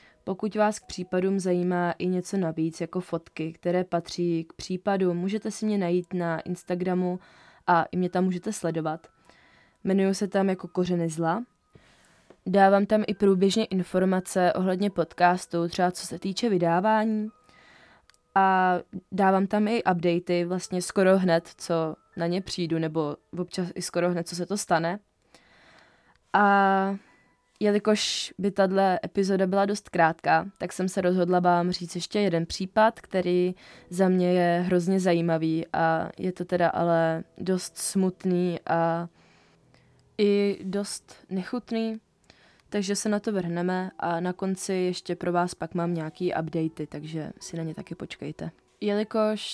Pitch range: 175-200 Hz